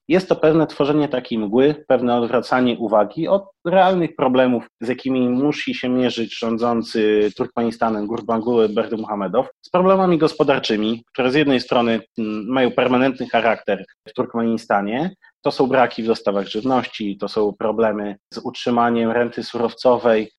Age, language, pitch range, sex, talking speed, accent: 30-49, Polish, 120-145 Hz, male, 135 wpm, native